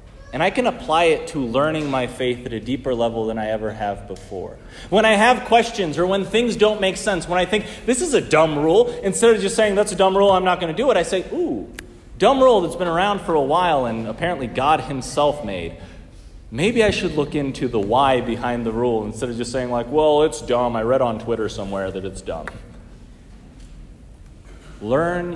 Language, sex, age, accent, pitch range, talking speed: English, male, 30-49, American, 115-185 Hz, 220 wpm